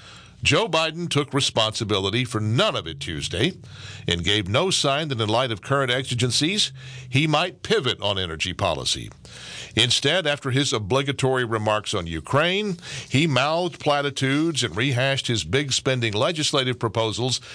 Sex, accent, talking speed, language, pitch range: male, American, 145 wpm, English, 115-145 Hz